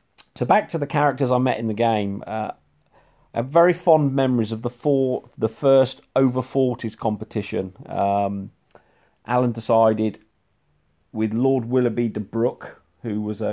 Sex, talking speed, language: male, 145 wpm, English